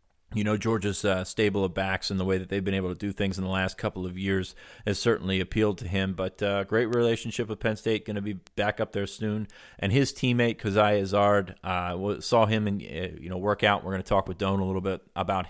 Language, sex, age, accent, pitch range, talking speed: English, male, 30-49, American, 95-110 Hz, 250 wpm